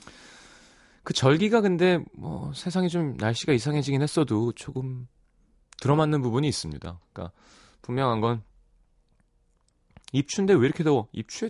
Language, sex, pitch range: Korean, male, 95-155 Hz